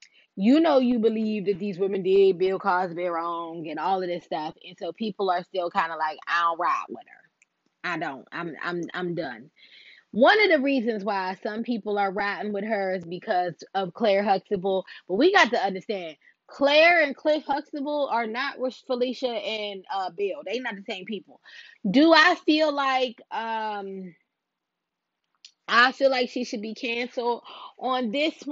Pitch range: 185-250 Hz